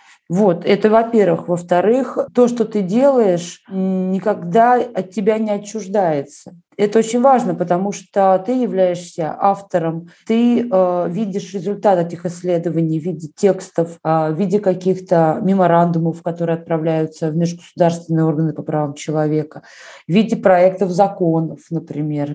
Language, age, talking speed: Russian, 20-39, 130 wpm